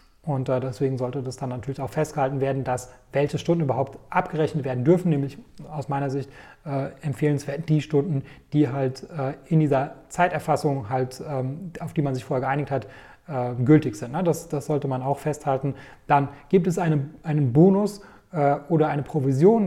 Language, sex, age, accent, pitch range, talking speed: German, male, 30-49, German, 140-160 Hz, 185 wpm